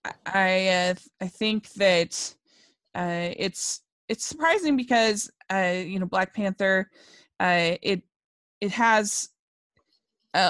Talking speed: 115 wpm